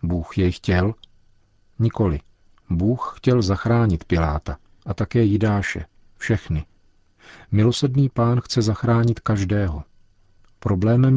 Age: 40-59